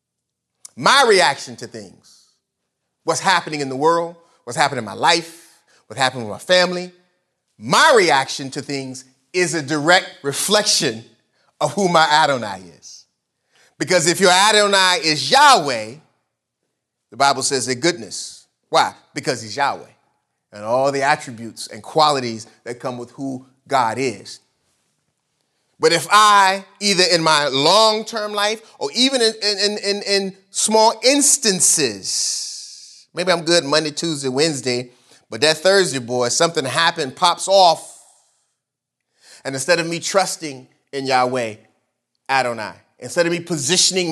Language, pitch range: English, 135-180 Hz